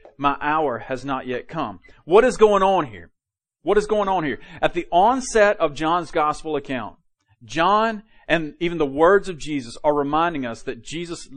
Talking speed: 185 wpm